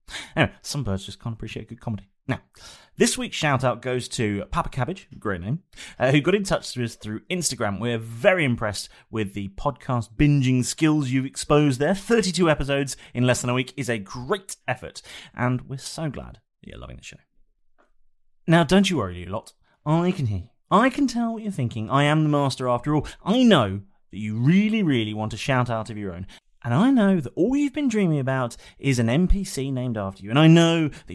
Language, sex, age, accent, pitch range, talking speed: English, male, 30-49, British, 110-175 Hz, 215 wpm